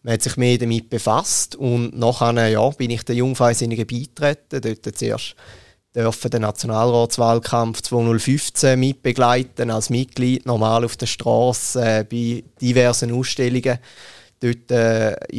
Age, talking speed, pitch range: 20-39, 130 wpm, 115-125 Hz